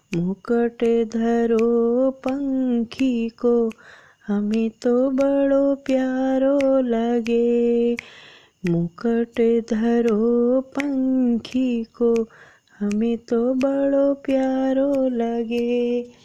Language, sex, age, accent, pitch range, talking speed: Hindi, female, 20-39, native, 235-270 Hz, 65 wpm